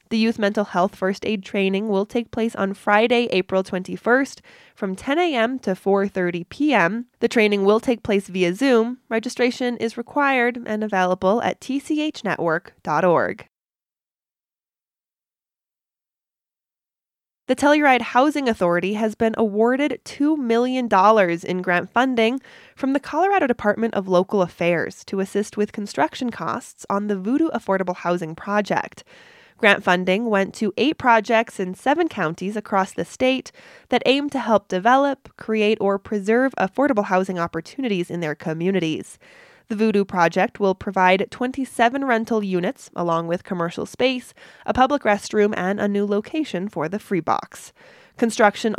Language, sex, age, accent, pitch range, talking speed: English, female, 20-39, American, 190-245 Hz, 140 wpm